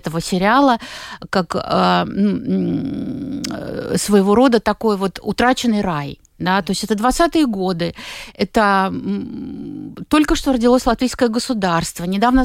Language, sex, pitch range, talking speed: Russian, female, 190-255 Hz, 110 wpm